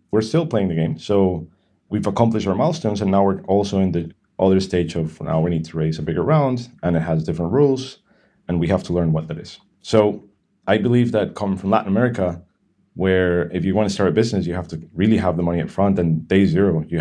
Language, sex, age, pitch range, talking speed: English, male, 30-49, 85-105 Hz, 245 wpm